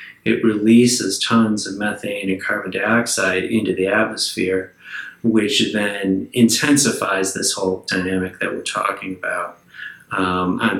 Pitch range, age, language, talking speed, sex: 95-115 Hz, 30-49, English, 130 wpm, male